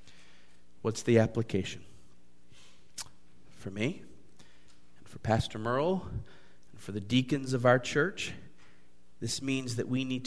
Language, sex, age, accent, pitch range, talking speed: English, male, 40-59, American, 100-145 Hz, 125 wpm